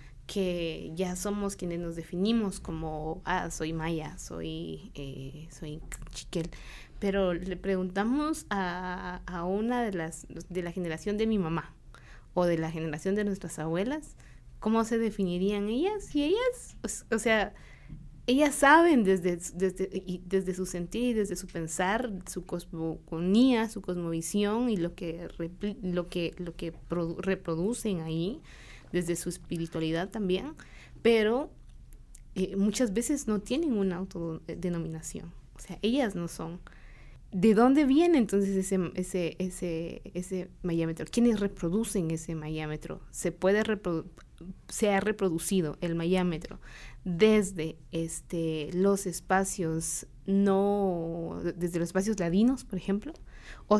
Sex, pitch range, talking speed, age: female, 165-205 Hz, 130 wpm, 20-39